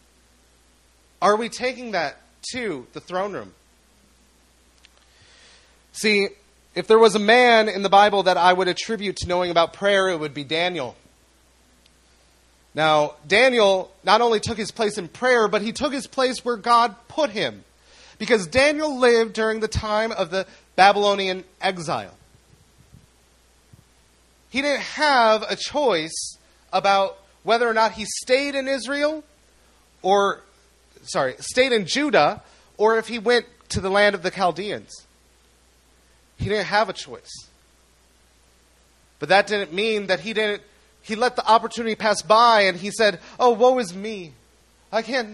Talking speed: 150 wpm